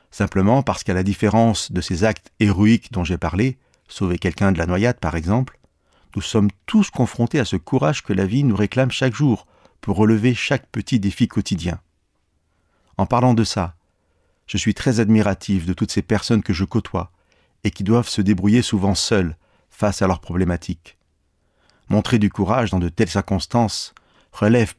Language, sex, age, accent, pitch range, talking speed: French, male, 40-59, French, 90-110 Hz, 175 wpm